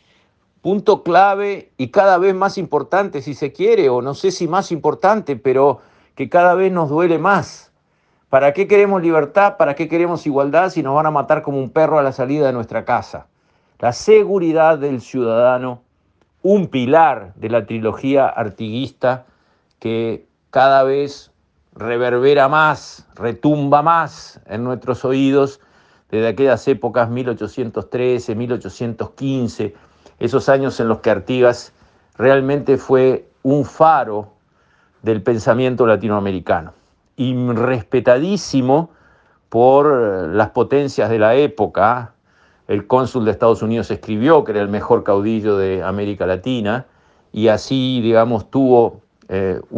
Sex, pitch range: male, 110-150 Hz